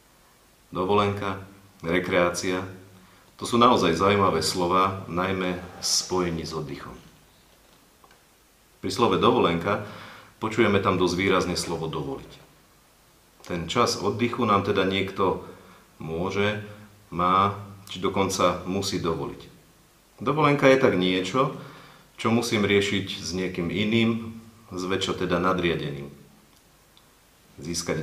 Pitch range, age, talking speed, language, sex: 85-105 Hz, 40-59, 100 wpm, Slovak, male